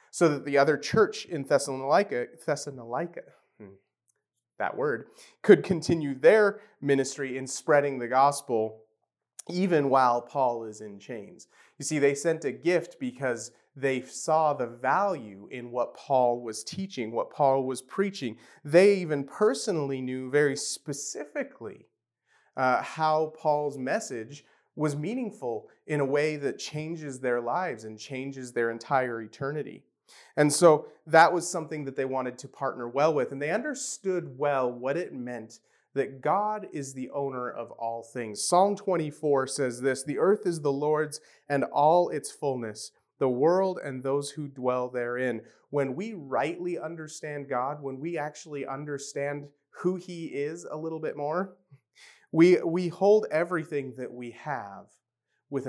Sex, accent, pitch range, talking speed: male, American, 130-165 Hz, 150 wpm